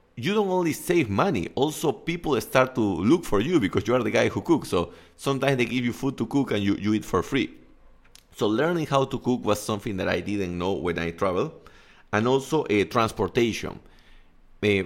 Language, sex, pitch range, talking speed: English, male, 95-120 Hz, 215 wpm